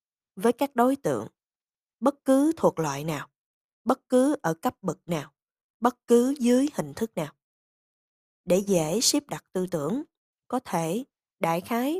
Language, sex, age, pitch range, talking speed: Vietnamese, female, 20-39, 165-240 Hz, 155 wpm